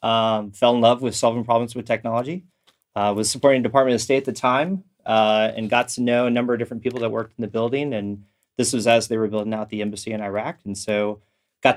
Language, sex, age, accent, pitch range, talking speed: English, male, 30-49, American, 110-125 Hz, 250 wpm